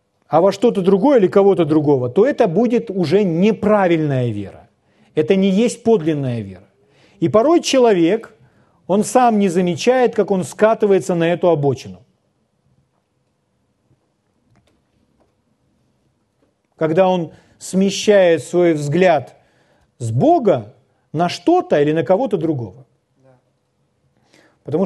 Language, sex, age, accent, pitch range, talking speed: Russian, male, 40-59, native, 135-200 Hz, 110 wpm